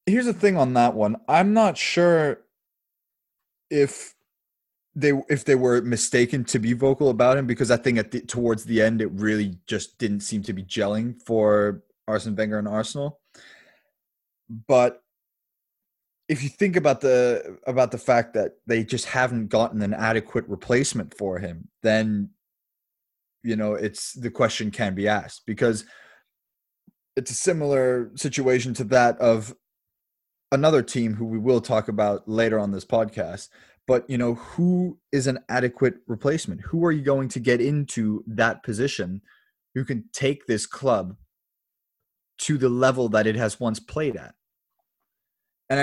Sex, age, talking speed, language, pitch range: male, 20-39, 155 wpm, English, 110-135 Hz